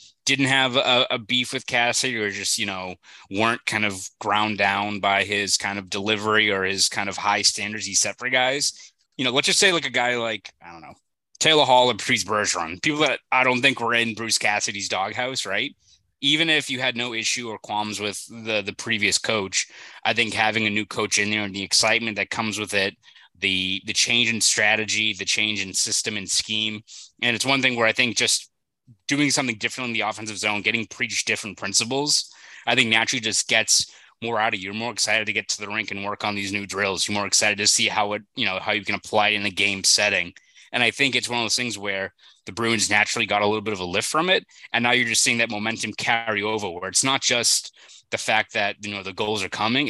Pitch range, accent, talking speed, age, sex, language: 100-120 Hz, American, 240 wpm, 20-39, male, English